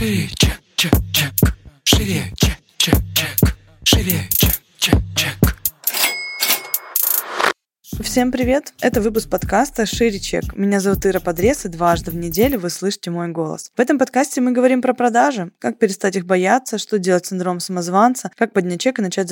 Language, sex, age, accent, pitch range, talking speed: Russian, female, 20-39, native, 185-230 Hz, 155 wpm